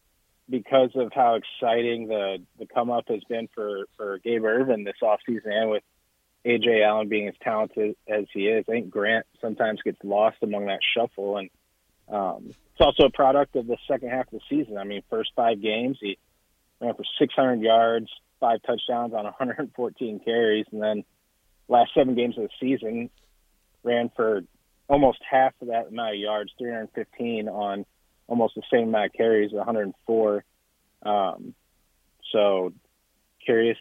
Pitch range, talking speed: 105-120 Hz, 160 wpm